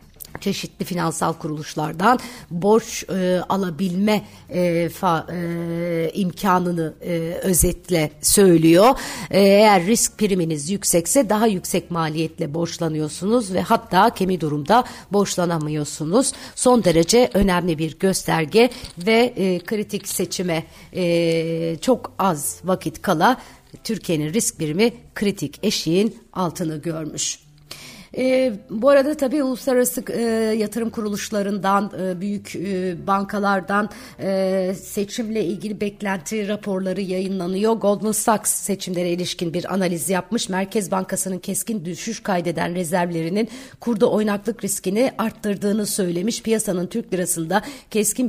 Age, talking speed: 60-79, 110 wpm